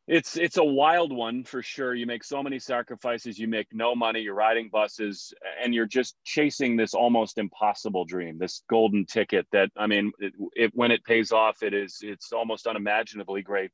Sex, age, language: male, 30-49, English